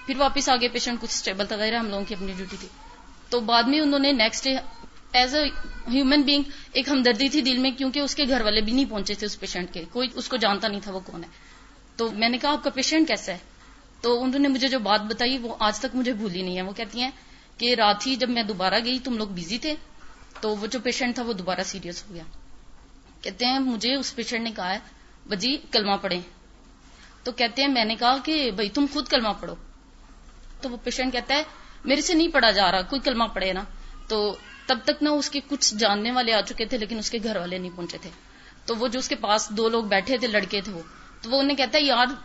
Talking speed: 180 wpm